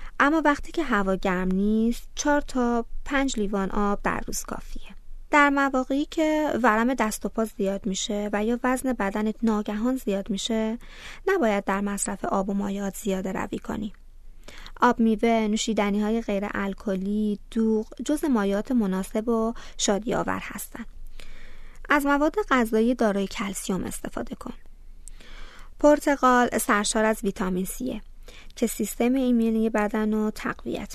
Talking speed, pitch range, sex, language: 140 wpm, 210-255 Hz, female, Persian